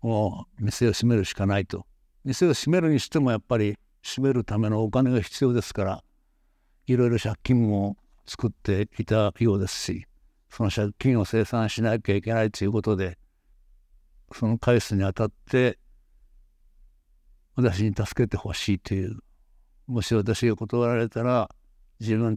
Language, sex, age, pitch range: Japanese, male, 60-79, 100-130 Hz